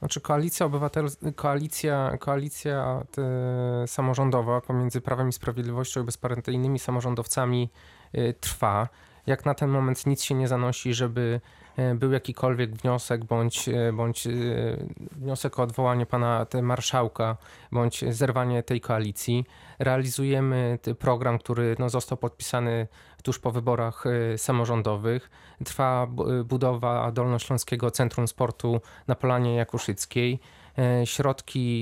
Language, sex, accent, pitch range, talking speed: Polish, male, native, 120-130 Hz, 100 wpm